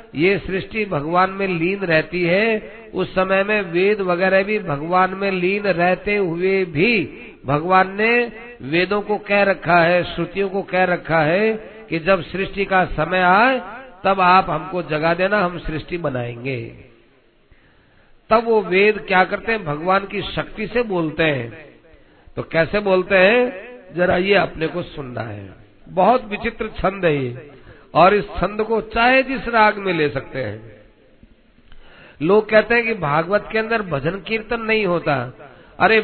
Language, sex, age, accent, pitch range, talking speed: Hindi, male, 50-69, native, 165-210 Hz, 160 wpm